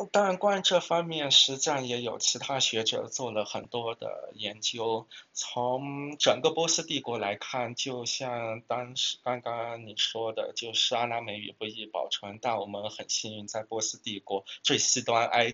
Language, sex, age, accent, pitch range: Chinese, male, 20-39, native, 105-120 Hz